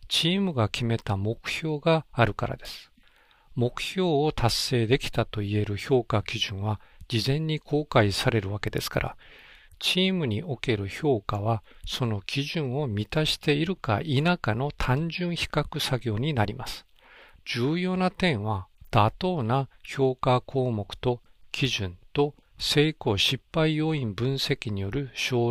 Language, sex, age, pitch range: Japanese, male, 50-69, 110-150 Hz